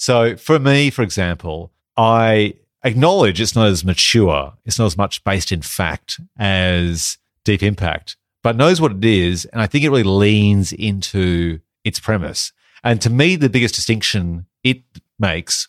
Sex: male